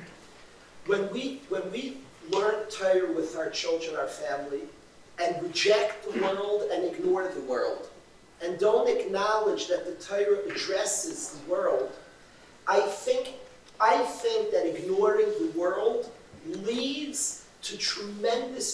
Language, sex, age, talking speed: English, male, 40-59, 125 wpm